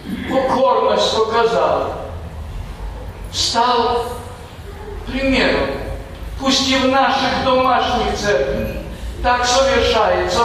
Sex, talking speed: male, 70 wpm